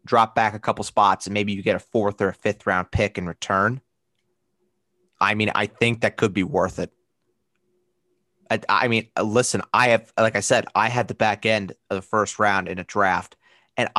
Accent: American